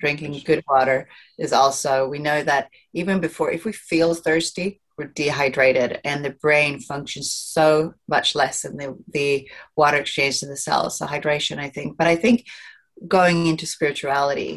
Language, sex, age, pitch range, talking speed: English, female, 30-49, 140-160 Hz, 170 wpm